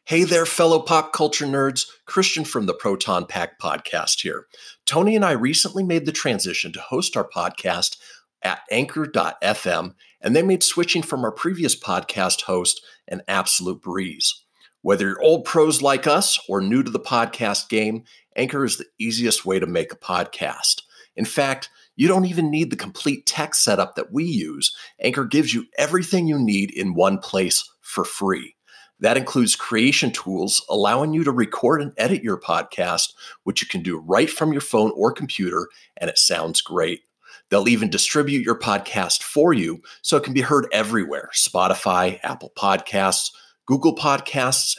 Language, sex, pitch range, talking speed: English, male, 110-160 Hz, 170 wpm